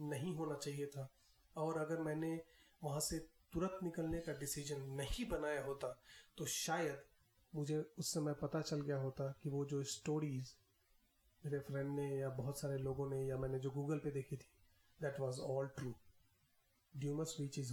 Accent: native